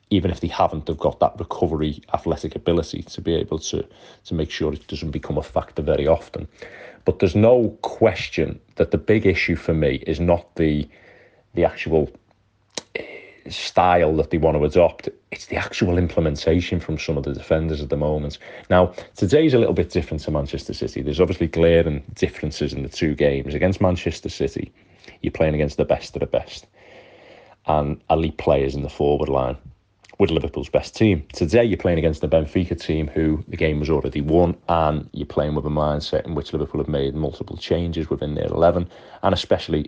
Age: 30-49